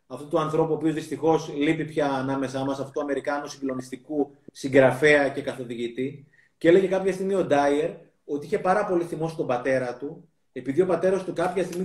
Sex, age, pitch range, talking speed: male, 30-49, 135-180 Hz, 185 wpm